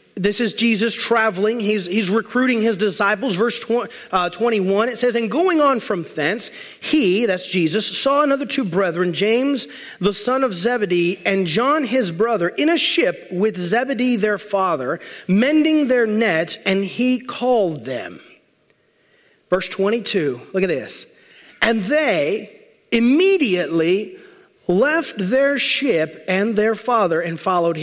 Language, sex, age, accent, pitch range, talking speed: English, male, 40-59, American, 190-265 Hz, 140 wpm